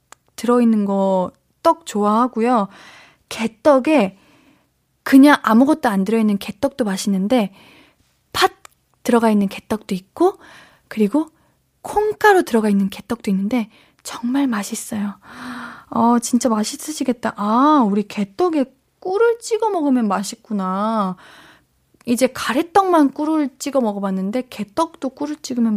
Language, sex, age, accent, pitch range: Korean, female, 20-39, native, 205-285 Hz